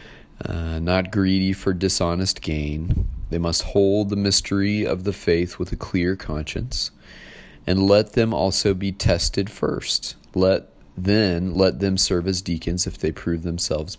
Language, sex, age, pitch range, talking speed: English, male, 30-49, 80-95 Hz, 155 wpm